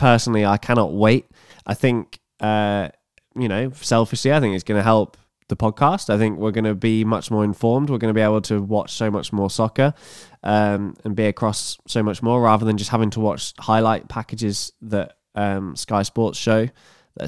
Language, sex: English, male